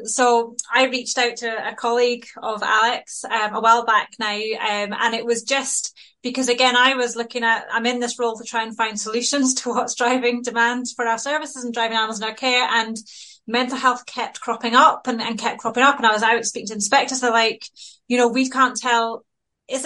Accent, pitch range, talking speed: British, 230-250 Hz, 225 wpm